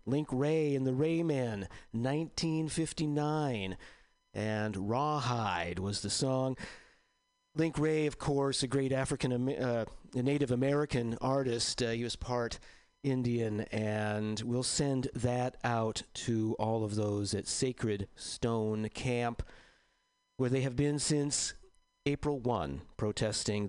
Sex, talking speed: male, 120 wpm